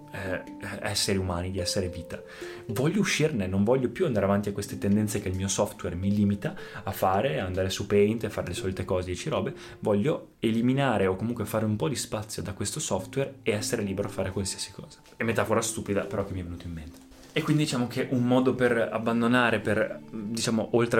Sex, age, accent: male, 20-39, native